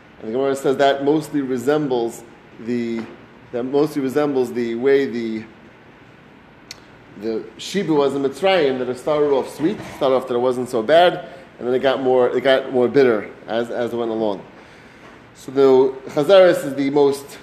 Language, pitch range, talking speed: English, 125-175 Hz, 175 wpm